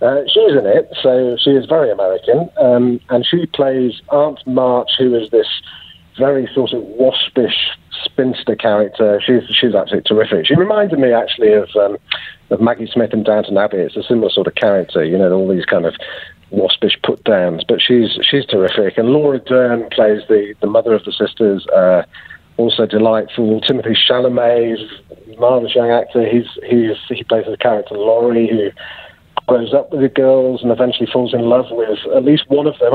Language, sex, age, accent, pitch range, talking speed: English, male, 50-69, British, 115-150 Hz, 185 wpm